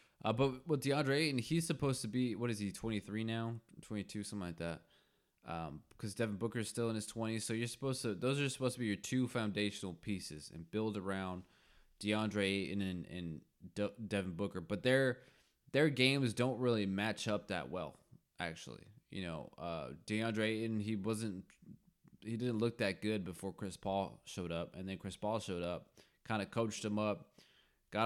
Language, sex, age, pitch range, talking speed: English, male, 20-39, 90-110 Hz, 190 wpm